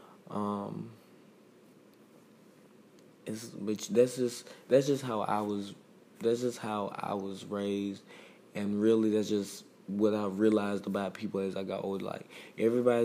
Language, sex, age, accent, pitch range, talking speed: English, male, 20-39, American, 105-120 Hz, 145 wpm